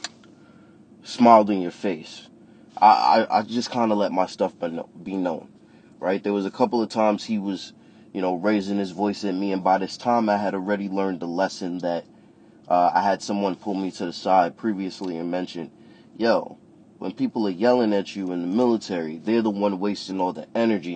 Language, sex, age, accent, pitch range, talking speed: English, male, 20-39, American, 95-115 Hz, 205 wpm